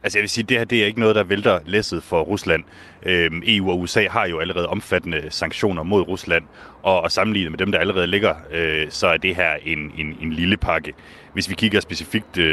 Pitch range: 85-100 Hz